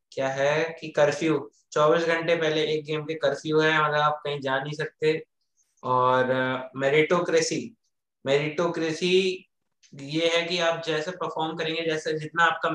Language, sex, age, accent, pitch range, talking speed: Hindi, male, 20-39, native, 140-160 Hz, 150 wpm